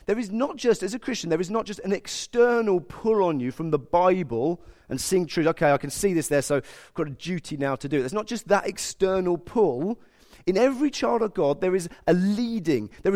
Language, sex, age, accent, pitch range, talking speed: English, male, 30-49, British, 155-225 Hz, 240 wpm